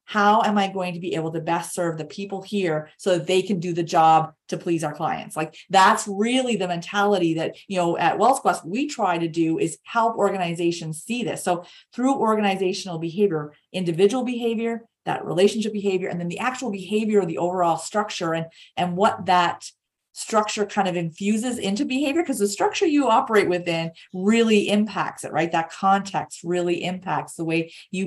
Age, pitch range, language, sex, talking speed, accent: 30-49, 170-215 Hz, English, female, 190 wpm, American